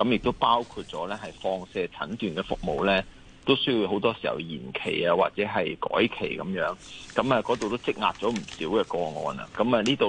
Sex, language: male, Chinese